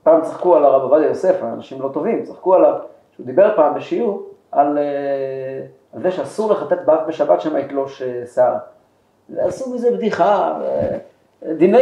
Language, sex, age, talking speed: Hebrew, male, 40-59, 150 wpm